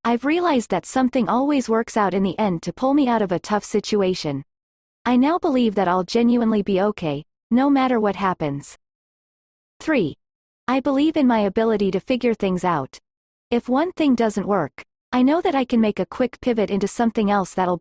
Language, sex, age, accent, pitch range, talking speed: English, female, 40-59, American, 190-250 Hz, 195 wpm